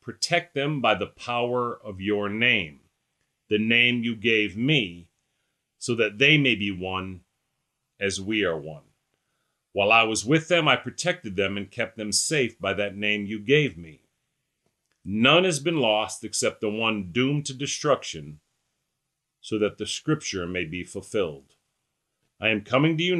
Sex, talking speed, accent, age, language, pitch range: male, 165 wpm, American, 40-59, English, 100-135 Hz